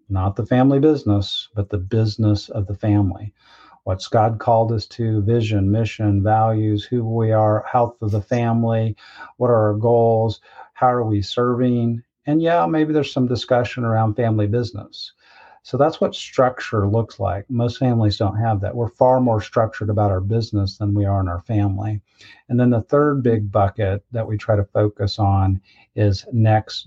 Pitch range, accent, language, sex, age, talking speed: 105-125 Hz, American, English, male, 50-69, 180 wpm